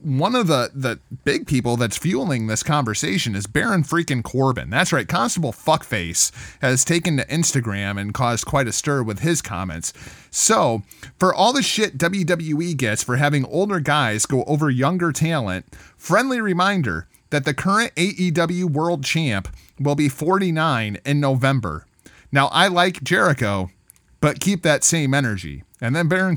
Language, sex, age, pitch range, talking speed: English, male, 30-49, 115-170 Hz, 160 wpm